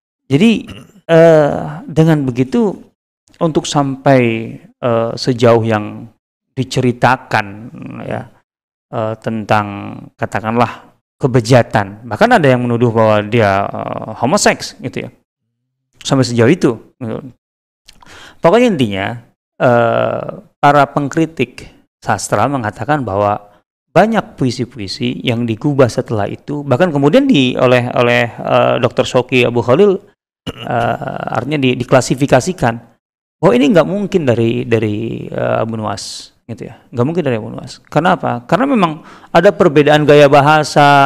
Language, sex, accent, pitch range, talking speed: Indonesian, male, native, 115-150 Hz, 115 wpm